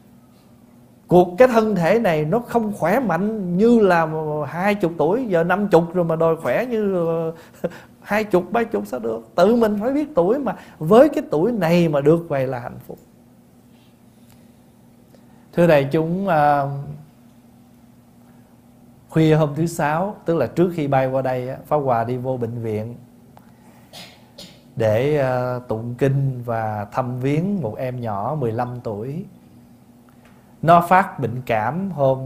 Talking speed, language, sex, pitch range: 150 wpm, Vietnamese, male, 120-165 Hz